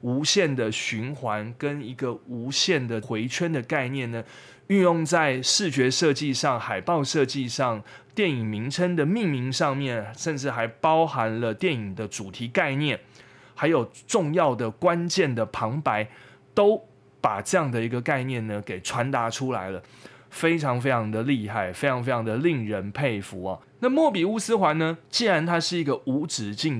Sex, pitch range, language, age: male, 115-150 Hz, Chinese, 20-39